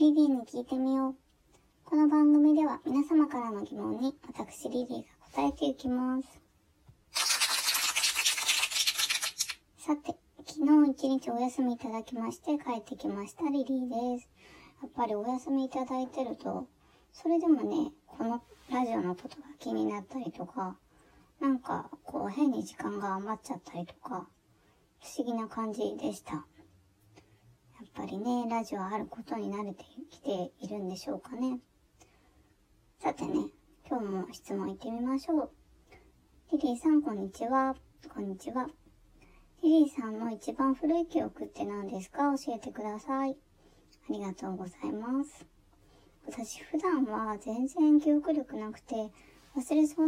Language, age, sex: Japanese, 20-39, male